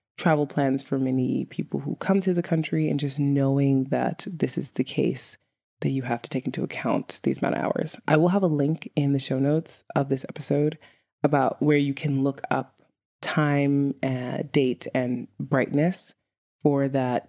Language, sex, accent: English, female, American